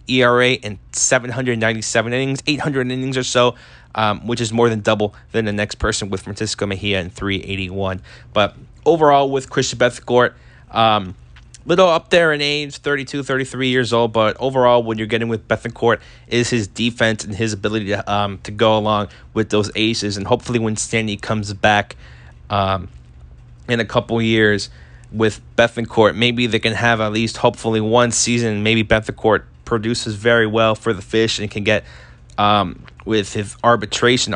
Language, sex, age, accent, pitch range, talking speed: English, male, 20-39, American, 100-120 Hz, 170 wpm